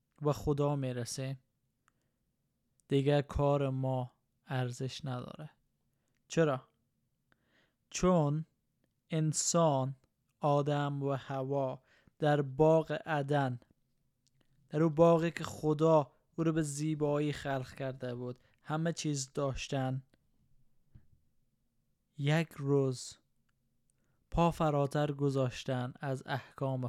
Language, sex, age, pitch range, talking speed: Persian, male, 20-39, 130-155 Hz, 85 wpm